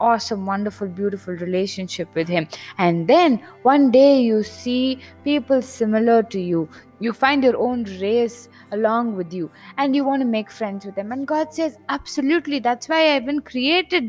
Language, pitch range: English, 185-265 Hz